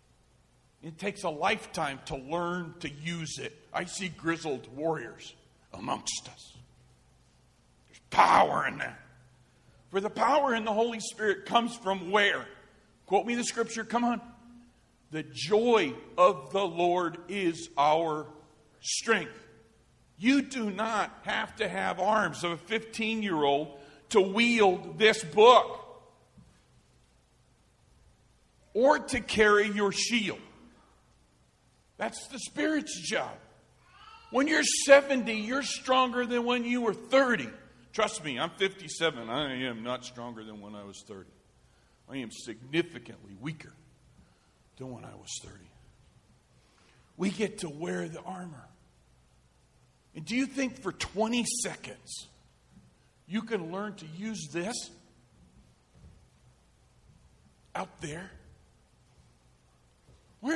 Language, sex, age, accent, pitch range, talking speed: English, male, 50-69, American, 140-230 Hz, 120 wpm